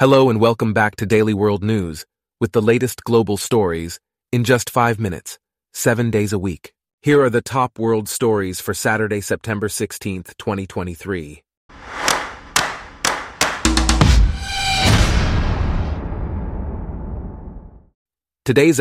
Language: English